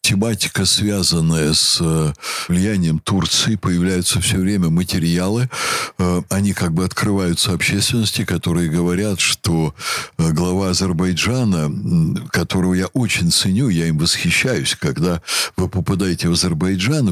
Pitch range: 85-105 Hz